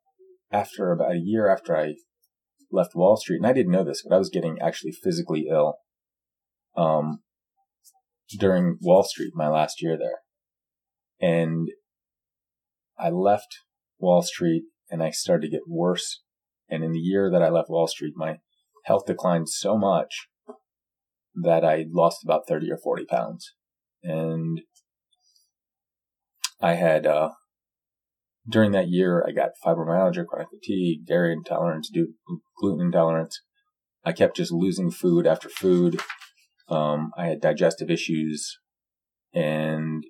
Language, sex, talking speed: English, male, 135 wpm